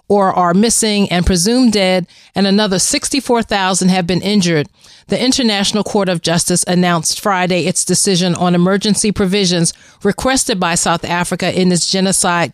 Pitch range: 175-205 Hz